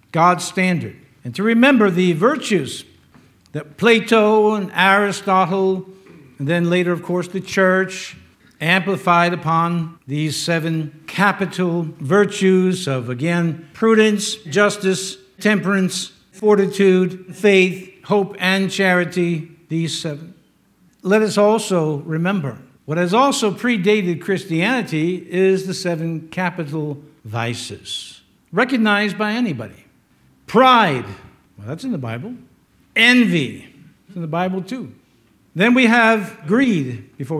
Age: 60-79